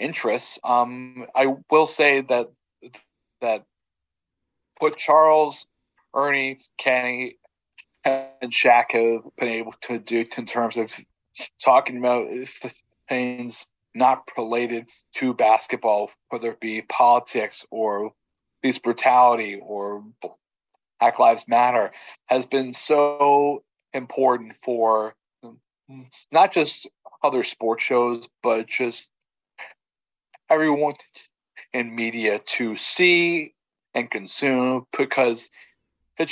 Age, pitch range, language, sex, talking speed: 40-59, 115-135 Hz, English, male, 100 wpm